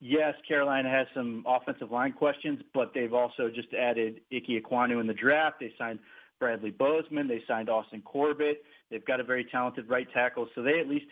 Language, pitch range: English, 120-135 Hz